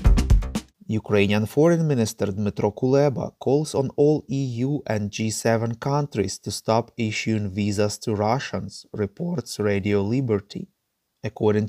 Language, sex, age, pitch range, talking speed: English, male, 30-49, 110-140 Hz, 115 wpm